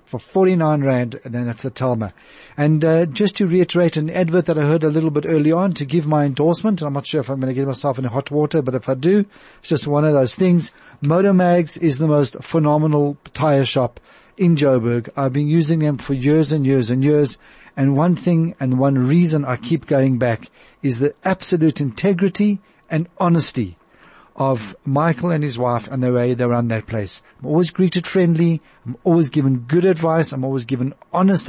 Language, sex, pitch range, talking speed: English, male, 135-170 Hz, 210 wpm